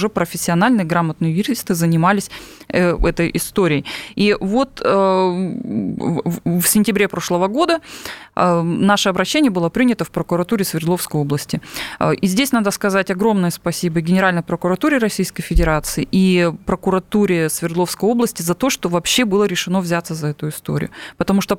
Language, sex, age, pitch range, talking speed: Russian, female, 20-39, 170-205 Hz, 130 wpm